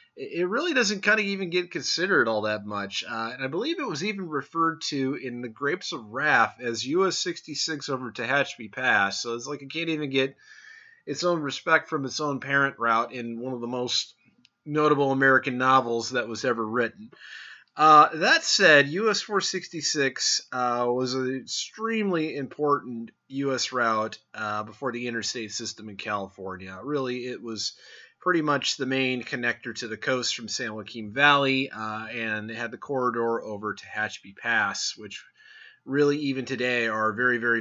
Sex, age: male, 30-49